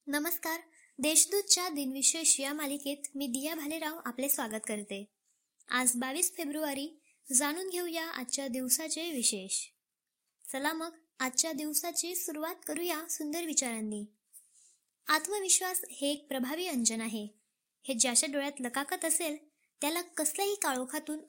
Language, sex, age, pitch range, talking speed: Marathi, male, 20-39, 265-325 Hz, 105 wpm